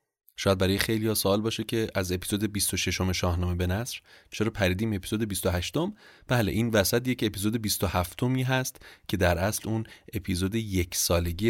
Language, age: Persian, 30-49